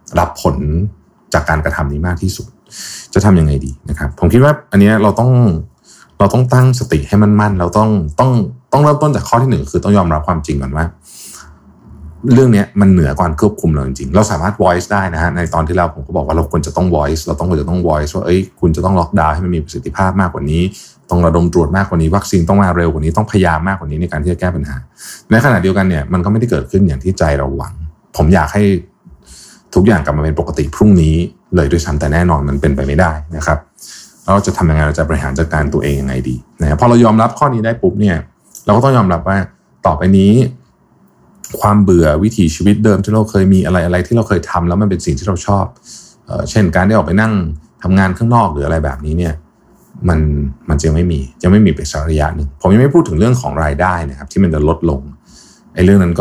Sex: male